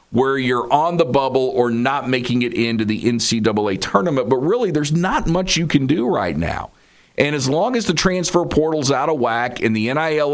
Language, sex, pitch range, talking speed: English, male, 120-165 Hz, 210 wpm